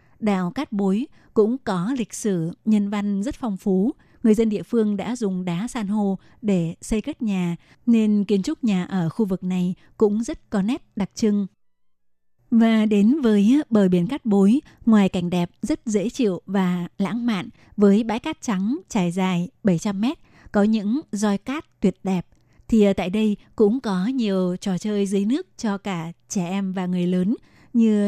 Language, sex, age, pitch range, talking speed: Vietnamese, female, 20-39, 190-225 Hz, 185 wpm